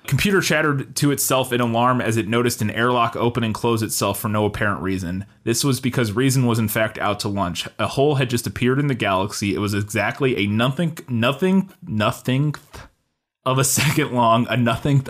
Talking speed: 200 wpm